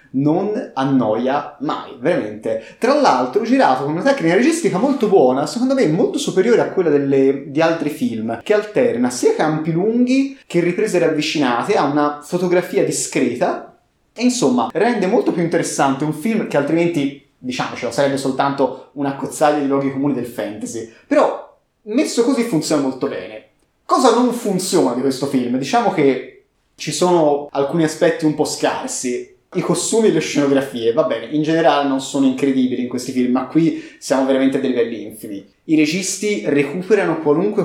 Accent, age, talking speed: native, 30-49, 165 wpm